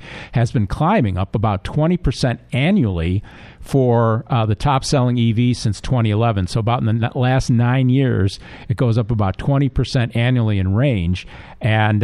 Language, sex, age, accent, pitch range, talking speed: English, male, 50-69, American, 100-125 Hz, 150 wpm